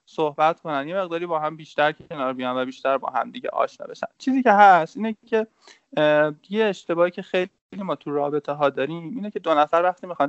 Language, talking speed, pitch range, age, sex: Persian, 210 wpm, 135-180 Hz, 20-39, male